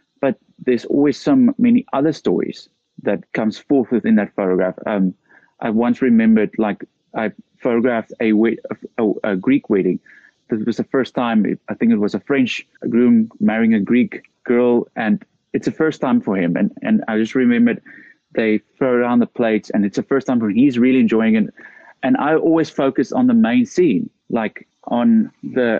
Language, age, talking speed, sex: English, 30-49, 185 wpm, male